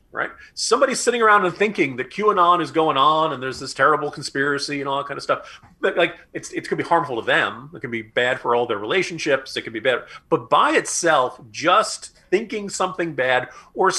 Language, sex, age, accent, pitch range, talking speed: English, male, 40-59, American, 125-180 Hz, 220 wpm